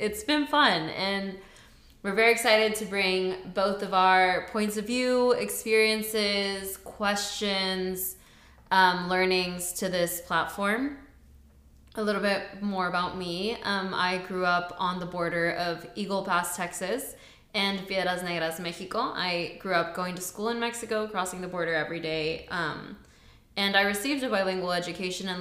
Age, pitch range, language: 20-39, 180-215 Hz, Spanish